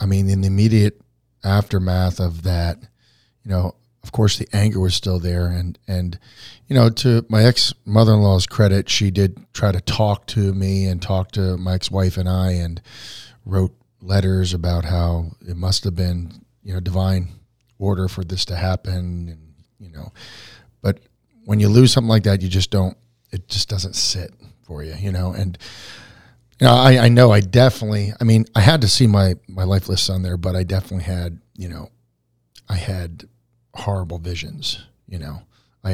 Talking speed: 180 wpm